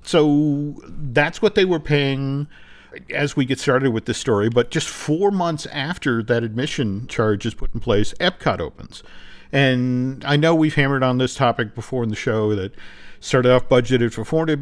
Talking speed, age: 185 wpm, 50-69